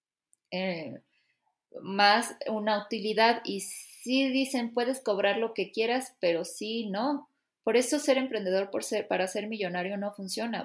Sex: female